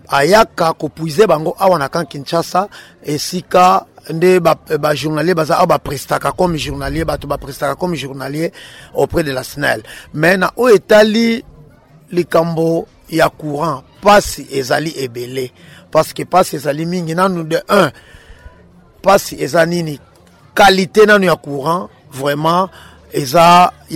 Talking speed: 155 wpm